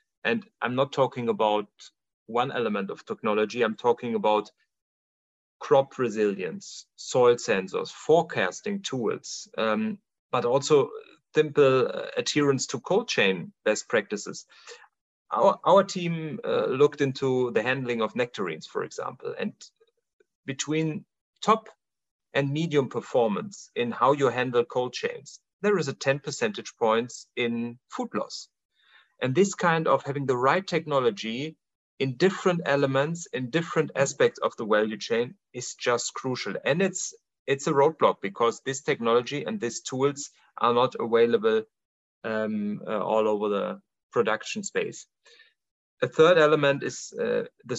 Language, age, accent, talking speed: English, 40-59, German, 140 wpm